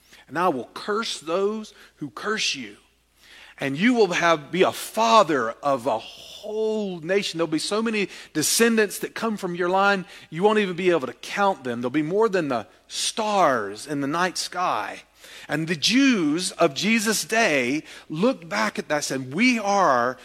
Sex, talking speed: male, 185 wpm